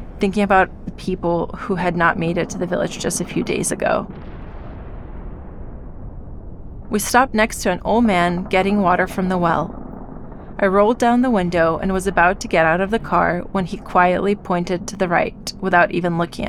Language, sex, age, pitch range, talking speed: Ukrainian, female, 30-49, 175-205 Hz, 195 wpm